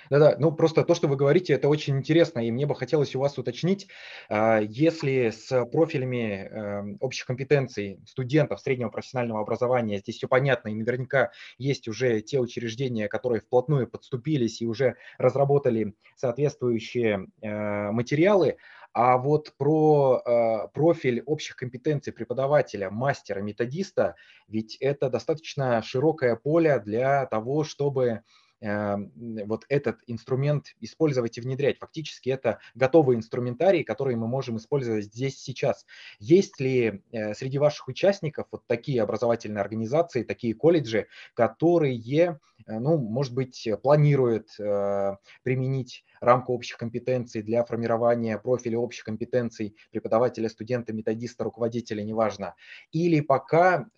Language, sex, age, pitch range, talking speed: Russian, male, 20-39, 110-140 Hz, 120 wpm